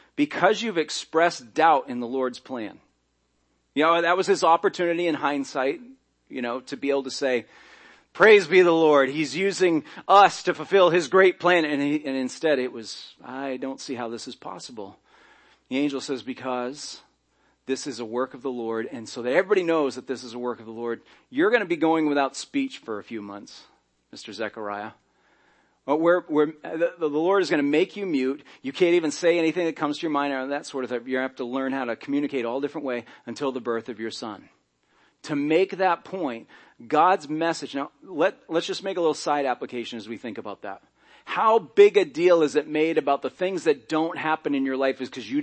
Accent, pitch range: American, 130-170 Hz